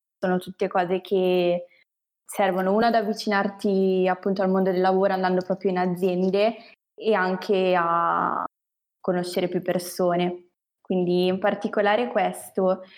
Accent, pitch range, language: native, 185-205 Hz, Italian